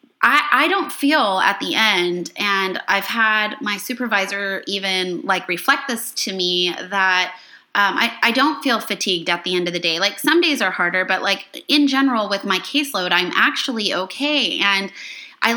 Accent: American